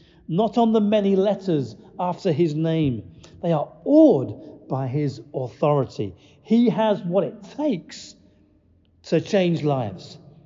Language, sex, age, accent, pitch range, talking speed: English, male, 50-69, British, 130-205 Hz, 125 wpm